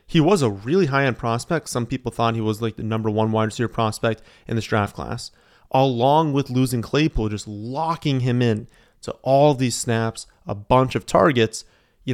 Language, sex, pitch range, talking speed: English, male, 110-140 Hz, 195 wpm